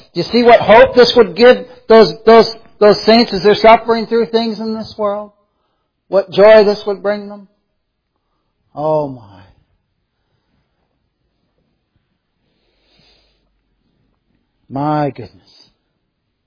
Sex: male